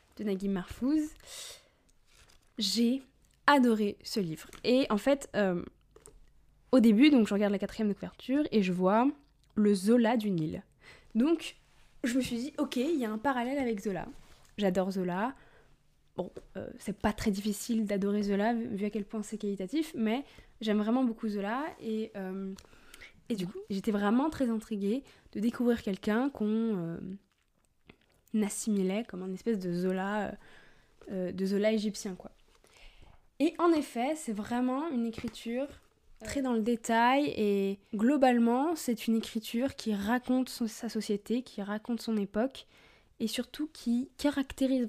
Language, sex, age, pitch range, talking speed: French, female, 20-39, 205-255 Hz, 150 wpm